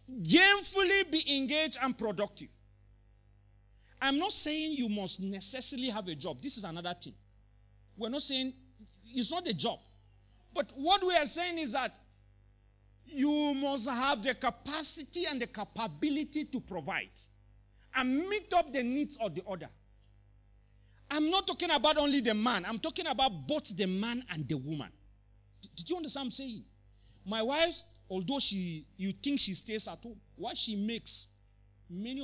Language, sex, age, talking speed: English, male, 50-69, 160 wpm